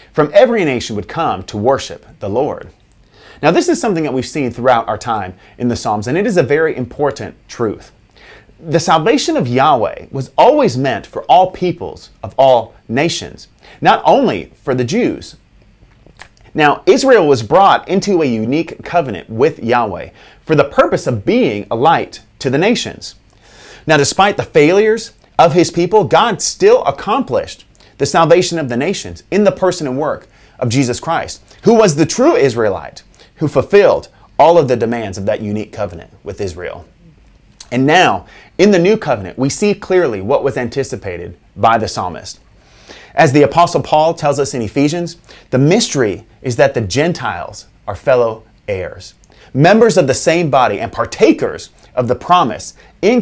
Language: English